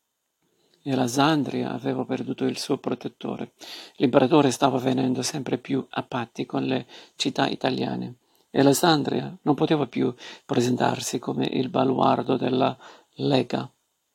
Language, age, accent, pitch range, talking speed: Italian, 50-69, native, 125-140 Hz, 130 wpm